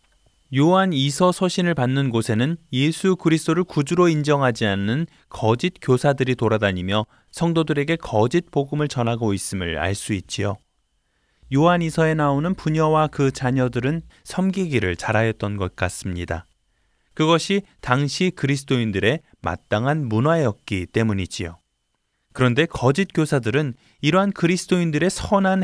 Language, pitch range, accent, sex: Korean, 105-165 Hz, native, male